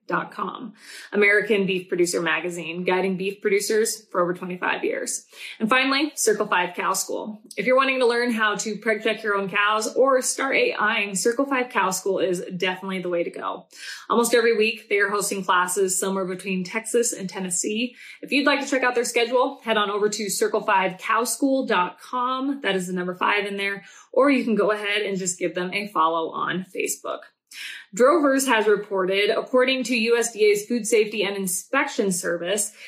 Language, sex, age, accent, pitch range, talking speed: English, female, 20-39, American, 195-255 Hz, 180 wpm